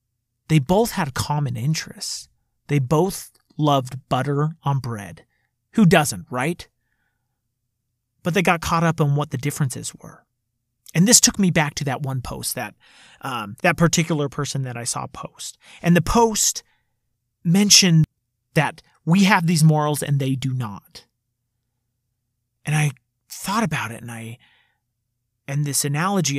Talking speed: 150 wpm